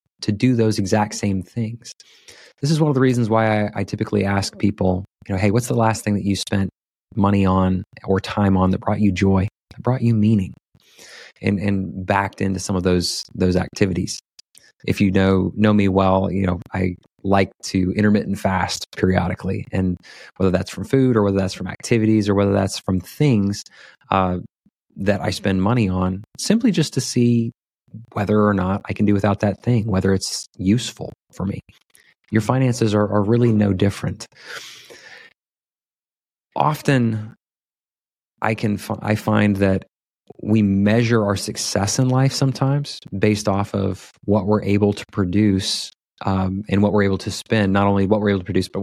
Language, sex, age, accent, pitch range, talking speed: English, male, 30-49, American, 95-110 Hz, 180 wpm